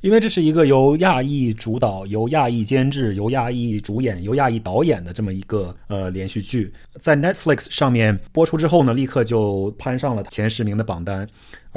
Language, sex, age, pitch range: Chinese, male, 30-49, 105-135 Hz